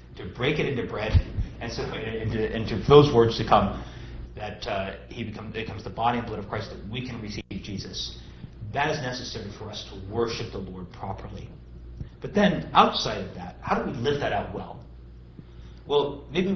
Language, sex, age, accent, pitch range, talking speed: English, male, 40-59, American, 100-140 Hz, 200 wpm